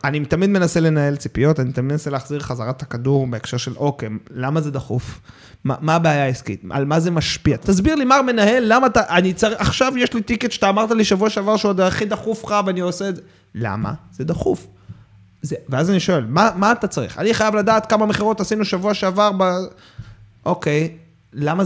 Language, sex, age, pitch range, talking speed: Hebrew, male, 30-49, 135-205 Hz, 200 wpm